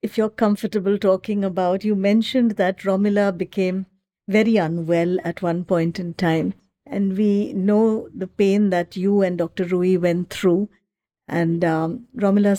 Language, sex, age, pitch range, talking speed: English, female, 60-79, 175-205 Hz, 155 wpm